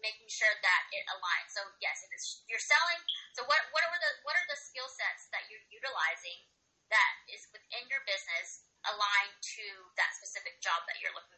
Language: English